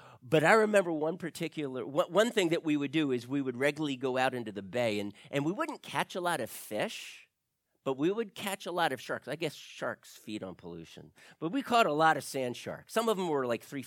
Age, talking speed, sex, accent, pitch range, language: 50-69, 245 wpm, male, American, 110-160 Hz, English